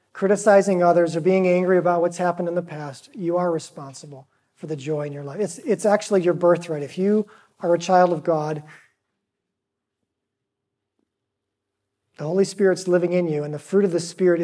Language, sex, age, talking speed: English, male, 40-59, 185 wpm